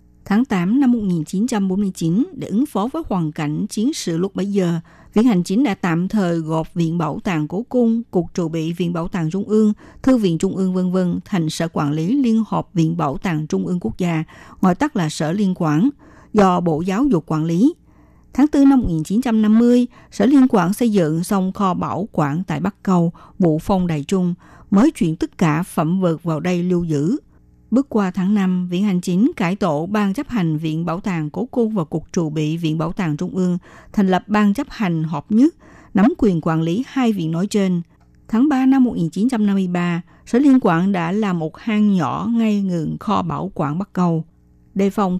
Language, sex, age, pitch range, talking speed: Vietnamese, female, 60-79, 165-215 Hz, 210 wpm